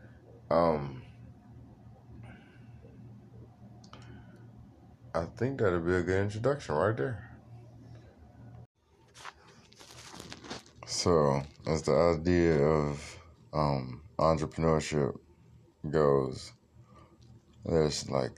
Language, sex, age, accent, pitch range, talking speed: English, male, 20-39, American, 75-110 Hz, 70 wpm